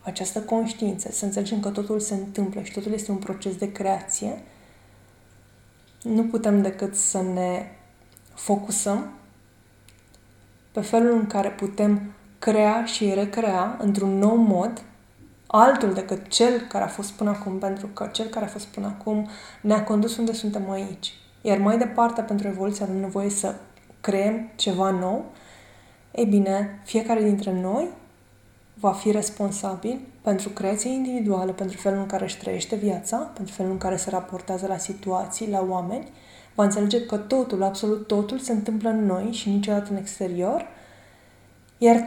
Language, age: Romanian, 20-39